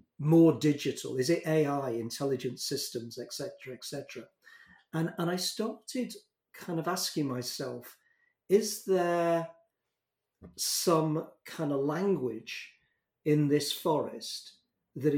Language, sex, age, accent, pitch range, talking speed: English, male, 40-59, British, 130-170 Hz, 105 wpm